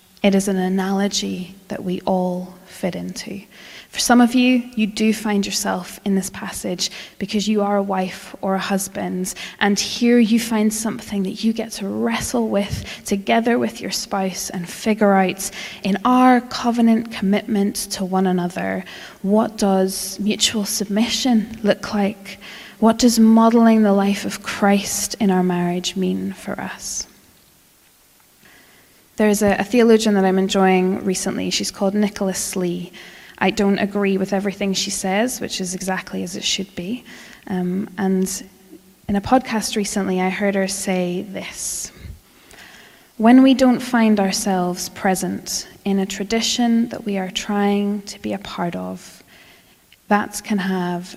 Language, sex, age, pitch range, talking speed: English, female, 20-39, 190-215 Hz, 150 wpm